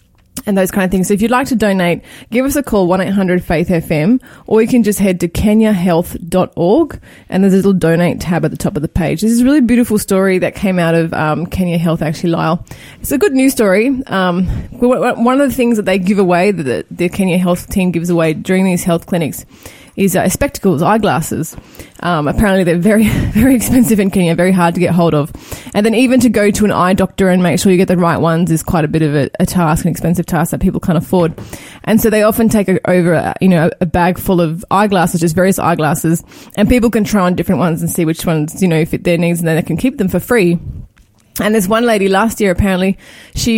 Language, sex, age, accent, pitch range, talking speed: English, female, 20-39, Australian, 175-215 Hz, 245 wpm